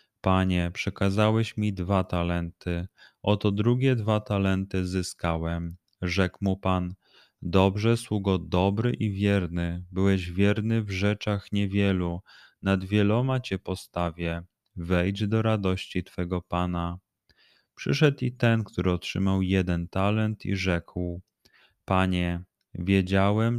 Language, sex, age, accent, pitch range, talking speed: Polish, male, 30-49, native, 90-105 Hz, 110 wpm